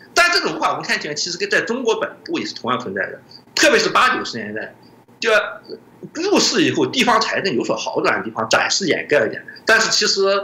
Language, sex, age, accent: Chinese, male, 50-69, native